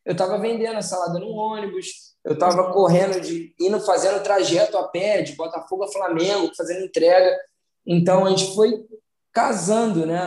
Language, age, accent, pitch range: Portuguese, 20-39, Brazilian, 170-205 Hz